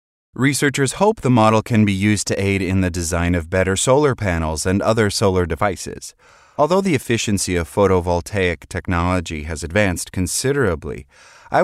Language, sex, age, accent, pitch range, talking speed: English, male, 30-49, American, 85-115 Hz, 155 wpm